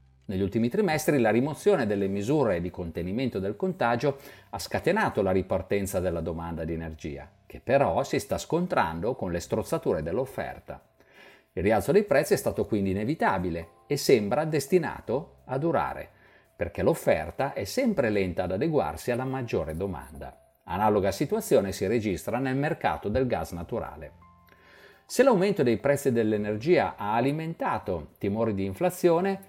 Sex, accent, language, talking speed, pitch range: male, native, Italian, 140 wpm, 95-140 Hz